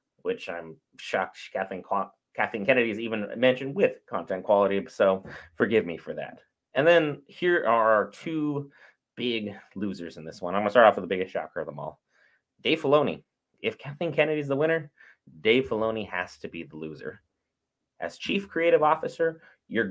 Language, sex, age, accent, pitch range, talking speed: English, male, 30-49, American, 110-150 Hz, 180 wpm